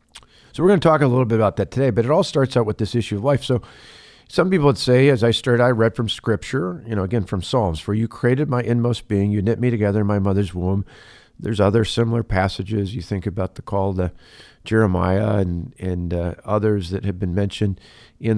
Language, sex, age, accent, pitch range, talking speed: English, male, 50-69, American, 100-115 Hz, 230 wpm